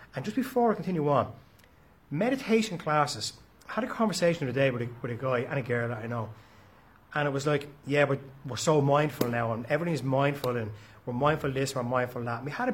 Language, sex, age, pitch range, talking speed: English, male, 30-49, 130-205 Hz, 245 wpm